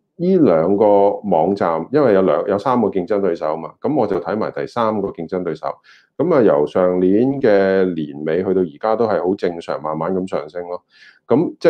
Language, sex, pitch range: Chinese, male, 85-115 Hz